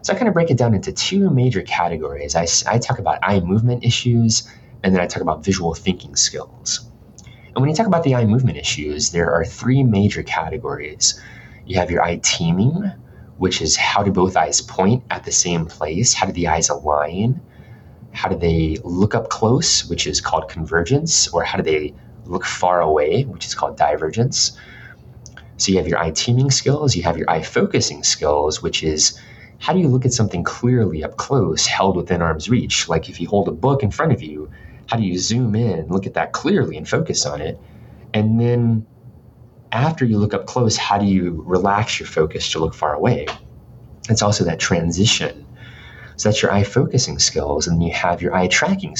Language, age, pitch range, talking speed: English, 30-49, 85-120 Hz, 205 wpm